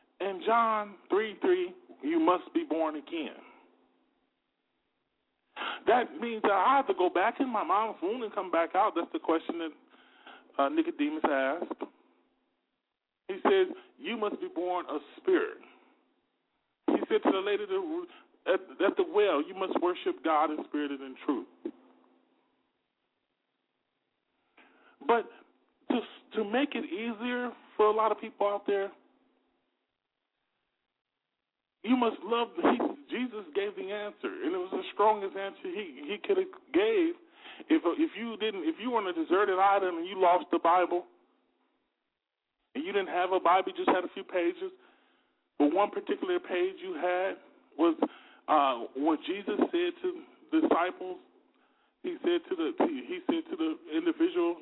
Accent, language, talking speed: American, English, 155 wpm